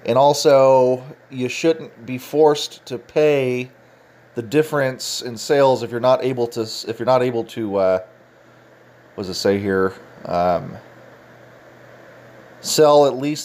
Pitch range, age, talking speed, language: 125-165 Hz, 30-49, 145 wpm, English